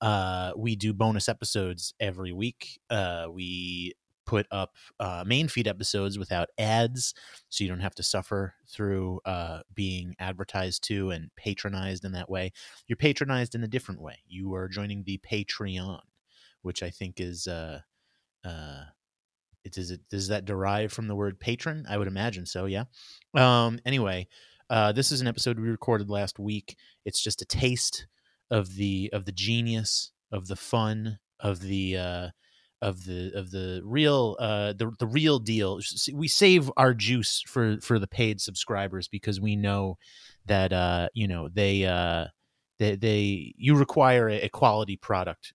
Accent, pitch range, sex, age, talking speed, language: American, 95-115 Hz, male, 30-49, 165 wpm, English